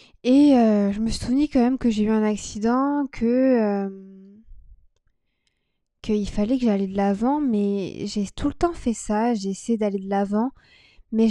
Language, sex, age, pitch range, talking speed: French, female, 20-39, 205-240 Hz, 175 wpm